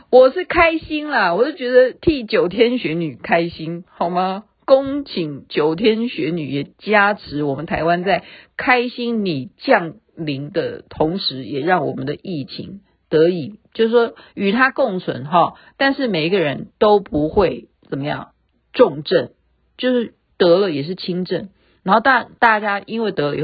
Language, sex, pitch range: Chinese, female, 155-230 Hz